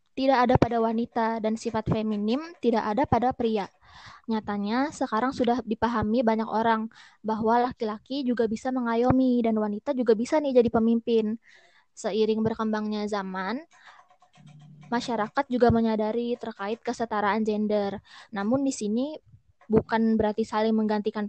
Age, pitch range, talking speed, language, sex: 20-39, 215-245 Hz, 125 wpm, Indonesian, female